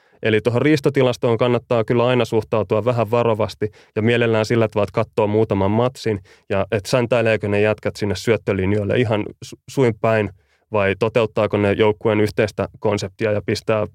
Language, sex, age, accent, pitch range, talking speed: Finnish, male, 20-39, native, 105-125 Hz, 150 wpm